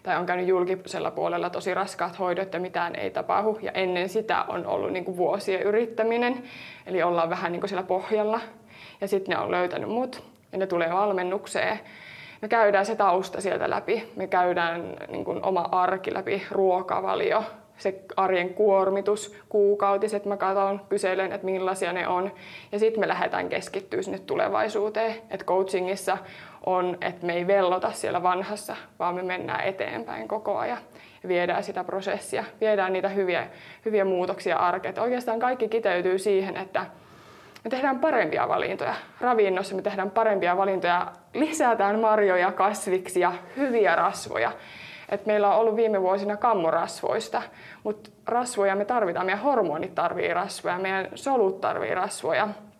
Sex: female